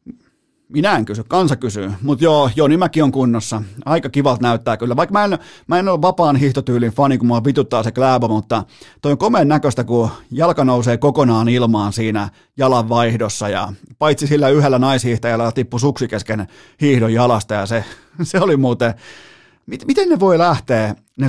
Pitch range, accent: 115-145 Hz, native